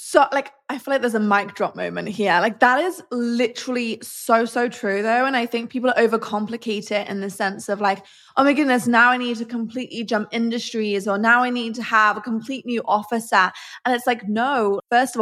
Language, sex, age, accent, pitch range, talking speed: English, female, 20-39, British, 210-255 Hz, 225 wpm